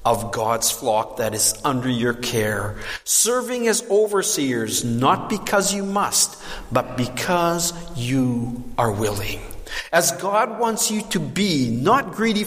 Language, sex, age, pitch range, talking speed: English, male, 50-69, 125-210 Hz, 135 wpm